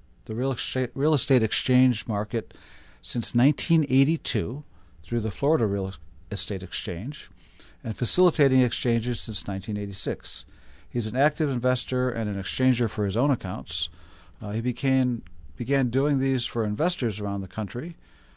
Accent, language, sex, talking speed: American, English, male, 150 wpm